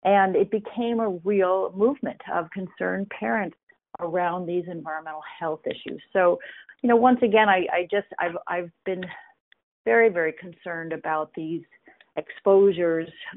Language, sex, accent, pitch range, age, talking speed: English, female, American, 155-205 Hz, 40-59, 140 wpm